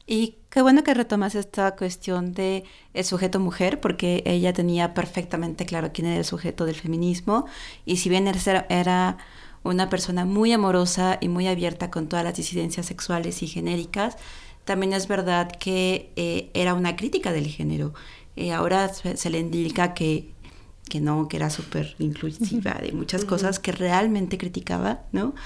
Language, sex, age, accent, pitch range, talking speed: Spanish, female, 30-49, Mexican, 170-195 Hz, 165 wpm